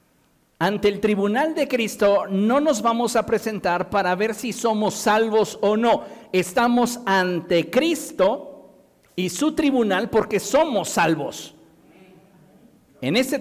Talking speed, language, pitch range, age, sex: 125 wpm, Spanish, 190-235 Hz, 50-69, male